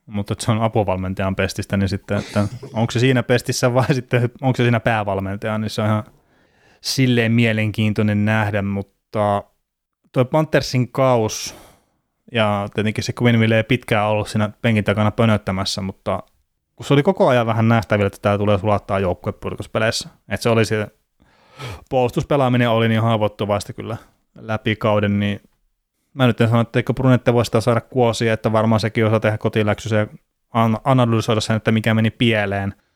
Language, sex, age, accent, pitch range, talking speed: Finnish, male, 20-39, native, 105-120 Hz, 160 wpm